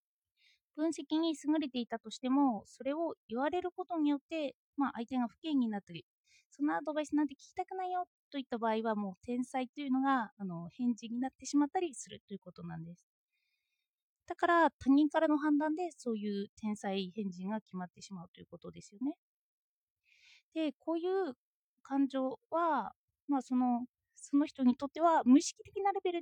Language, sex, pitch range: Japanese, female, 230-310 Hz